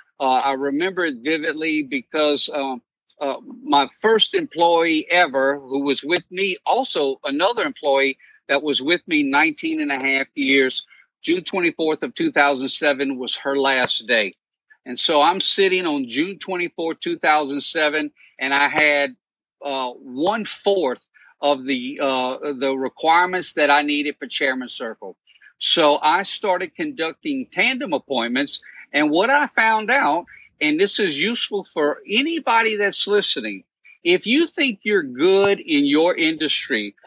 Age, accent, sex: 50-69, American, male